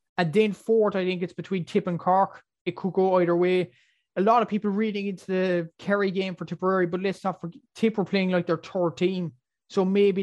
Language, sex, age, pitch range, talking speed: English, male, 20-39, 180-210 Hz, 230 wpm